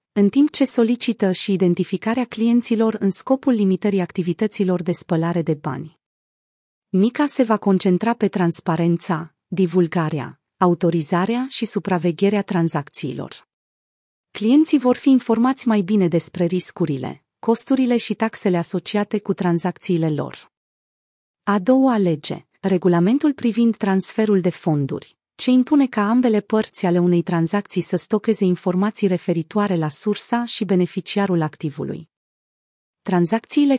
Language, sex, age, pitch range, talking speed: Romanian, female, 30-49, 175-225 Hz, 120 wpm